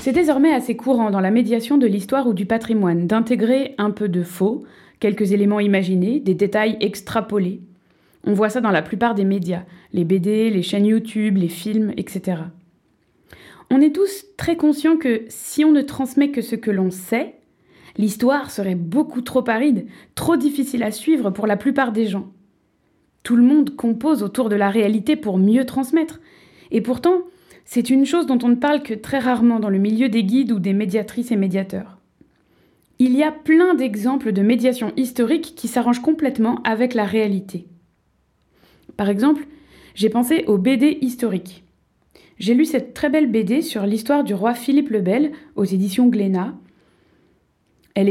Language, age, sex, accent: French, 20-39, female, French